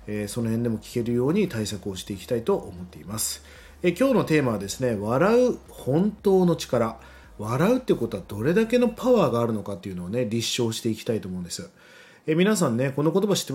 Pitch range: 110-175 Hz